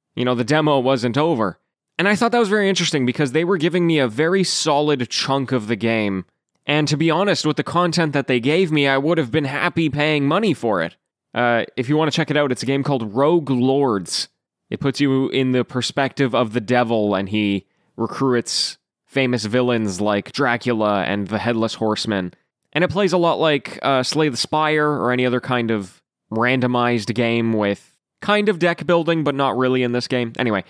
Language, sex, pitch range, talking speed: English, male, 120-150 Hz, 210 wpm